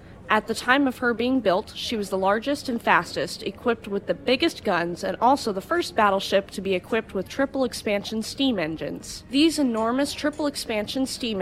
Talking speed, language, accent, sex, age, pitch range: 190 wpm, English, American, female, 20-39, 185-245 Hz